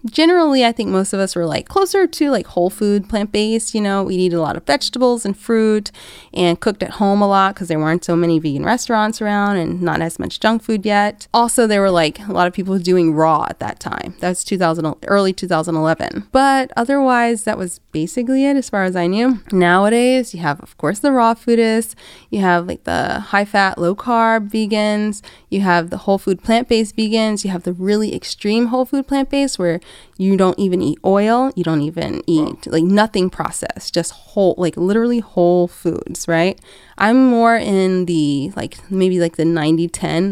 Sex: female